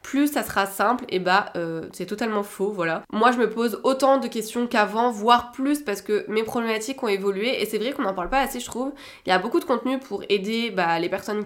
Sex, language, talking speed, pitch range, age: female, French, 250 wpm, 195-240 Hz, 20-39